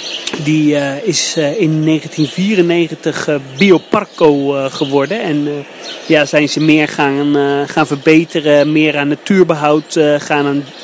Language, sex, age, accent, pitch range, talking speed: Dutch, male, 30-49, Dutch, 150-180 Hz, 115 wpm